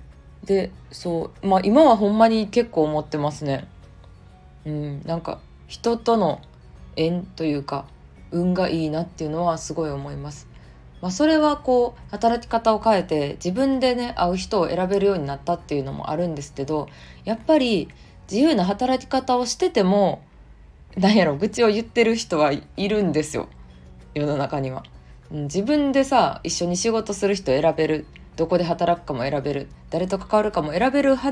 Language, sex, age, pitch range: Japanese, female, 20-39, 145-220 Hz